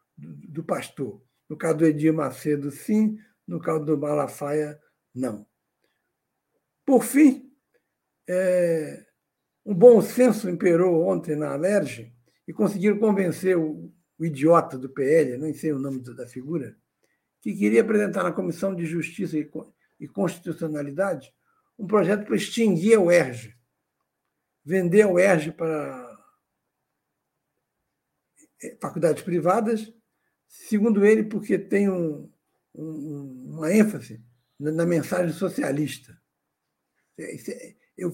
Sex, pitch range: male, 150-190 Hz